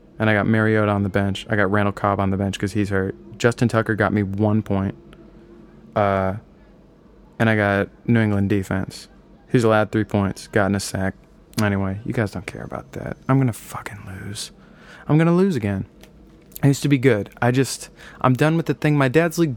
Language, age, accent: English, 20-39, American